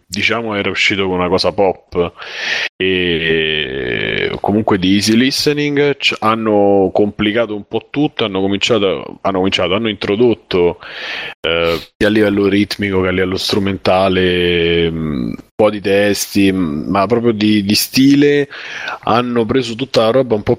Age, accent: 30-49, native